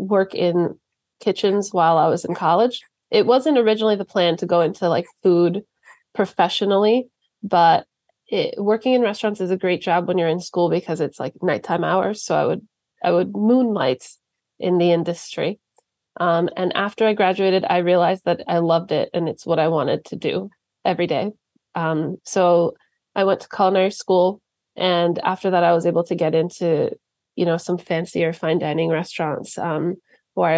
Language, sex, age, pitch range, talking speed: English, female, 30-49, 170-210 Hz, 175 wpm